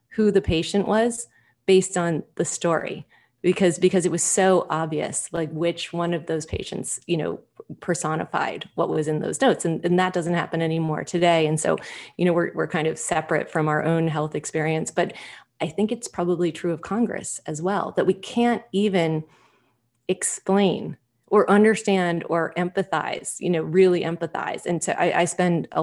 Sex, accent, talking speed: female, American, 180 wpm